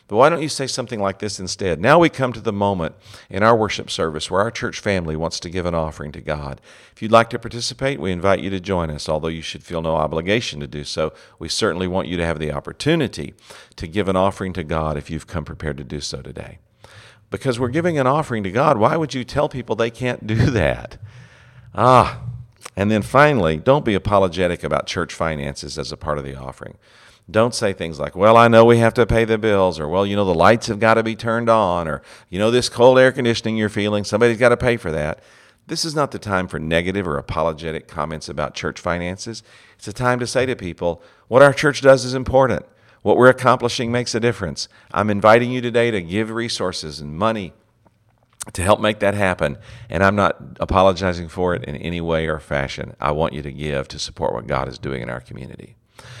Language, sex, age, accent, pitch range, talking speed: English, male, 50-69, American, 80-120 Hz, 230 wpm